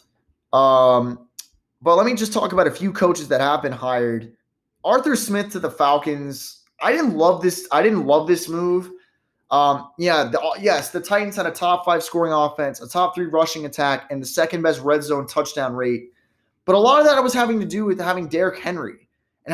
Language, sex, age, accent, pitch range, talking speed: English, male, 20-39, American, 140-180 Hz, 205 wpm